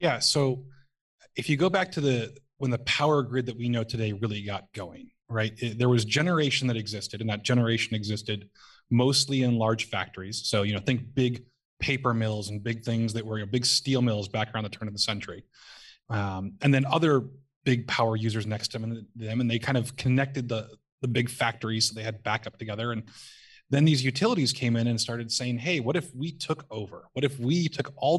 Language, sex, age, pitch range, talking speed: English, male, 20-39, 110-140 Hz, 210 wpm